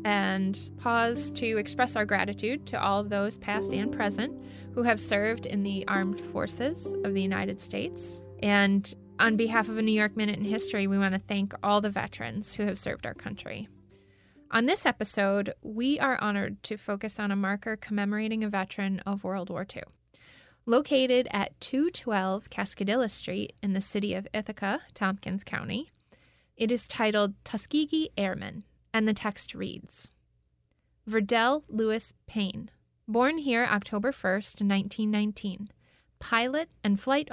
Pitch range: 195-225 Hz